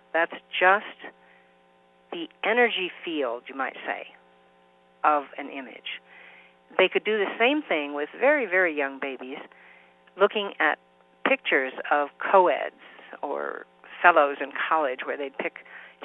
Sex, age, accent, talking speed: female, 50-69, American, 125 wpm